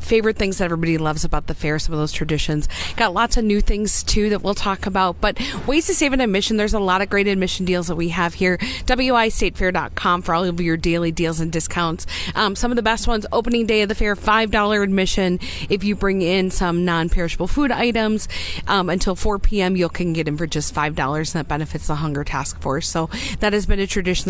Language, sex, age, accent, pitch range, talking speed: English, female, 40-59, American, 170-215 Hz, 235 wpm